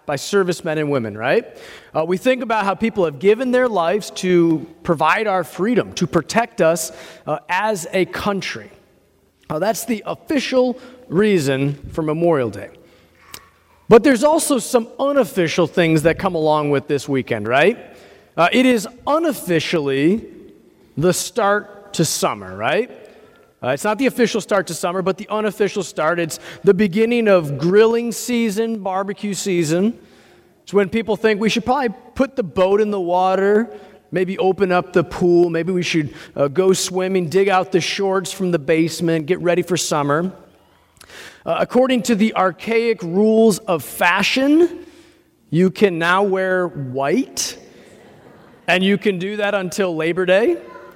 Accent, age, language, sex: American, 40-59, English, male